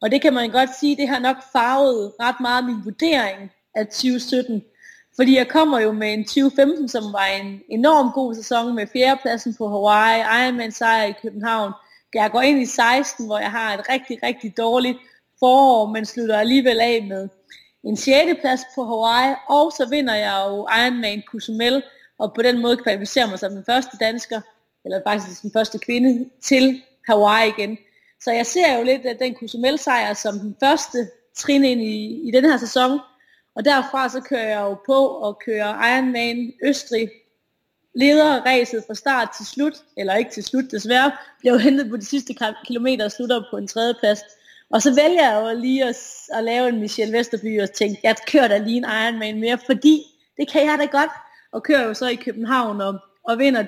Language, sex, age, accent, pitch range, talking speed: Danish, female, 30-49, native, 220-265 Hz, 195 wpm